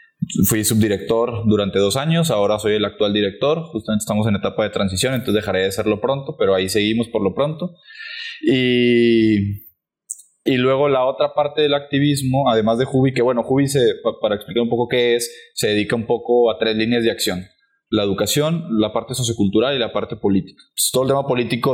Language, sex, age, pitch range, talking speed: Spanish, male, 20-39, 105-130 Hz, 195 wpm